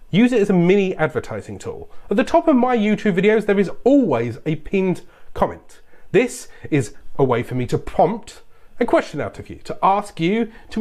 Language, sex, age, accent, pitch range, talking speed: English, male, 30-49, British, 165-235 Hz, 205 wpm